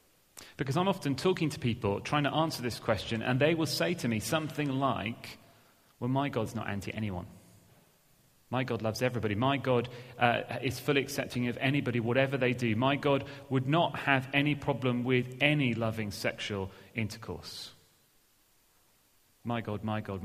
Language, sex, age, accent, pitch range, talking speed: English, male, 30-49, British, 110-140 Hz, 165 wpm